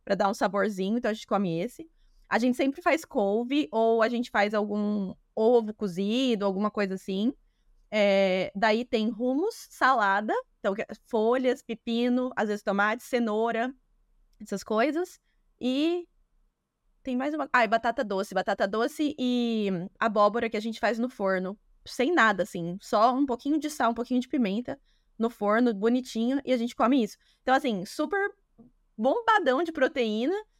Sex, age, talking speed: female, 20-39, 160 wpm